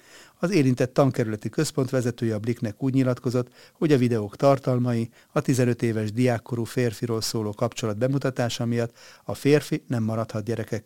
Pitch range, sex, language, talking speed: 110-130 Hz, male, Hungarian, 150 wpm